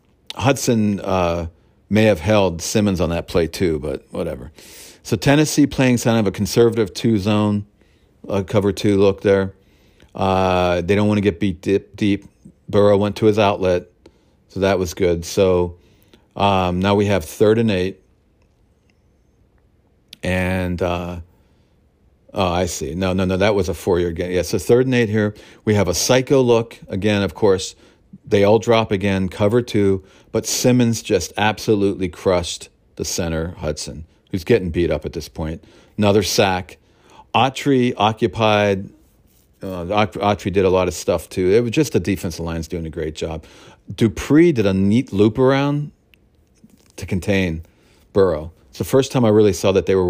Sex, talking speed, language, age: male, 165 wpm, English, 50-69